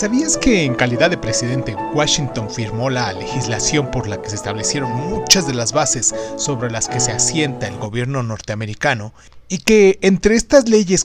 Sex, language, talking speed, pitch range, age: male, Spanish, 175 wpm, 120-175 Hz, 30-49